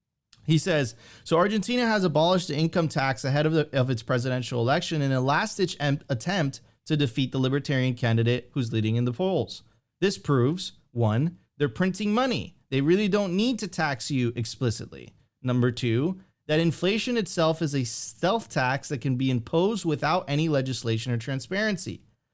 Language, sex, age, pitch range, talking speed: English, male, 30-49, 130-185 Hz, 165 wpm